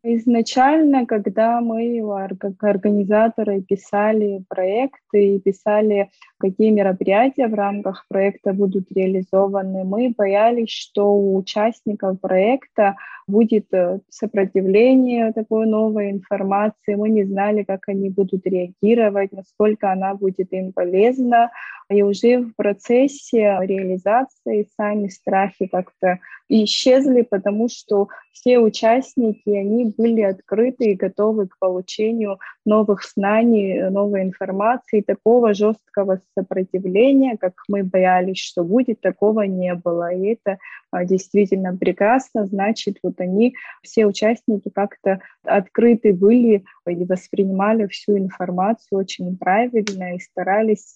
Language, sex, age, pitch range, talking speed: Russian, female, 20-39, 190-220 Hz, 110 wpm